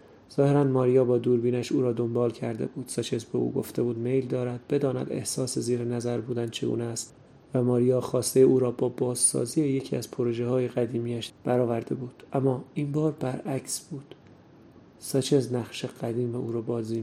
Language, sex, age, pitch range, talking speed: Persian, male, 30-49, 120-130 Hz, 175 wpm